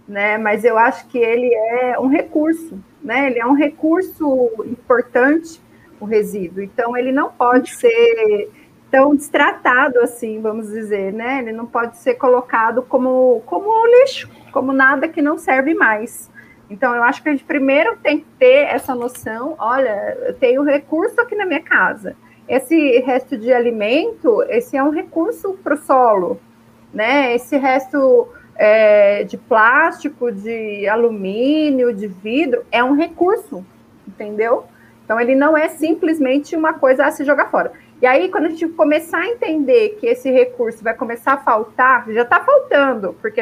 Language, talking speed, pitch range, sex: Portuguese, 160 wpm, 235-315 Hz, female